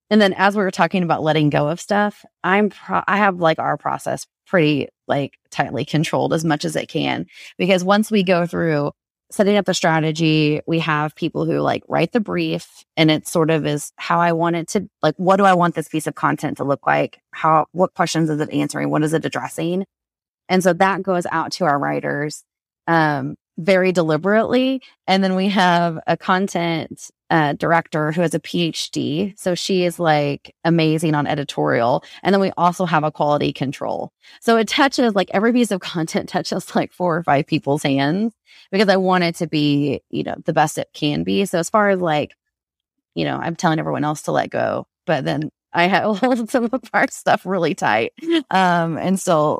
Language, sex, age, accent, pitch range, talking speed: English, female, 30-49, American, 155-195 Hz, 205 wpm